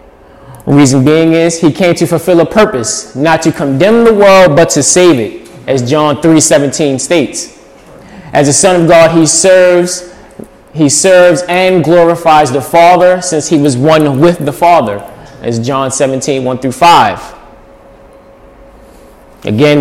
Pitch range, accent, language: 145-180 Hz, American, English